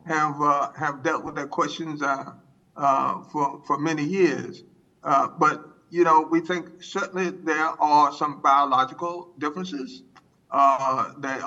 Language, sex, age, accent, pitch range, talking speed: English, male, 50-69, American, 135-170 Hz, 140 wpm